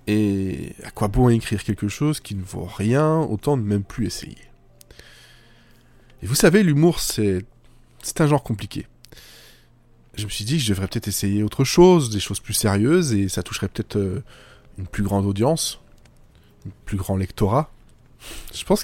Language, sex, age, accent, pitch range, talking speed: French, male, 20-39, French, 105-130 Hz, 170 wpm